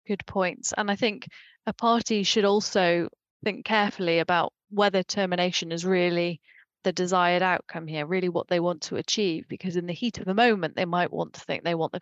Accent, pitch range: British, 175-205 Hz